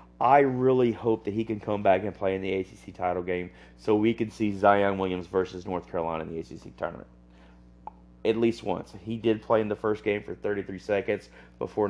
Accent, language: American, English